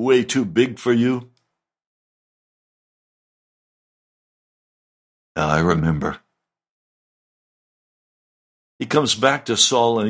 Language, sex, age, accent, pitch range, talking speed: English, male, 60-79, American, 90-130 Hz, 75 wpm